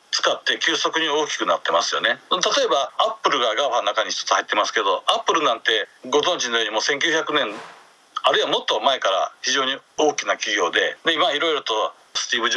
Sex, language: male, Japanese